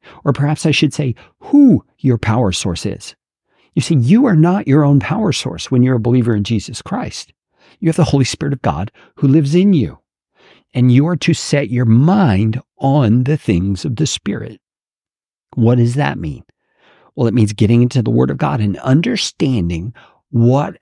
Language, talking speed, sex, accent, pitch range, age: English, 190 wpm, male, American, 110-155 Hz, 50-69